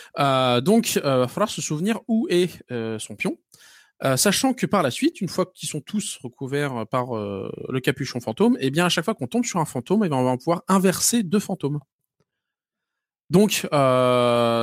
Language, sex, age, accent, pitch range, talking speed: French, male, 20-39, French, 125-180 Hz, 205 wpm